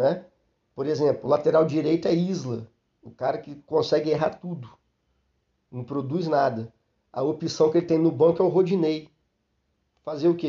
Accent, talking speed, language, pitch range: Brazilian, 170 wpm, Portuguese, 150-175 Hz